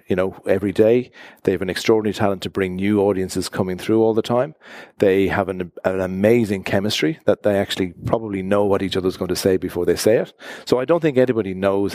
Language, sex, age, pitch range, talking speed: English, male, 40-59, 95-115 Hz, 225 wpm